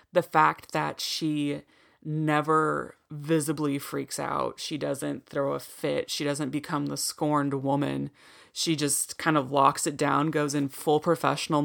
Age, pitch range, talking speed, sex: 20-39, 145-160 Hz, 155 wpm, female